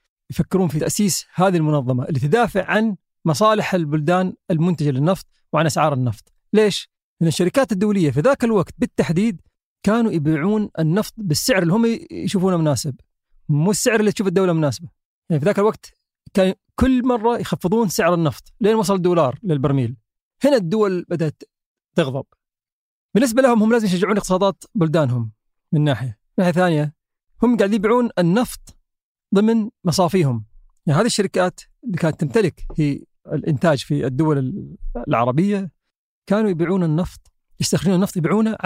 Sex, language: male, Arabic